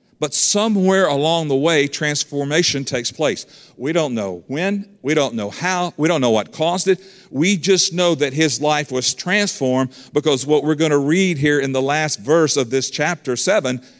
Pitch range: 130-160 Hz